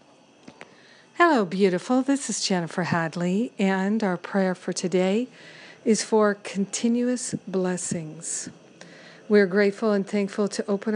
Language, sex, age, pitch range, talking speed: English, female, 50-69, 180-210 Hz, 120 wpm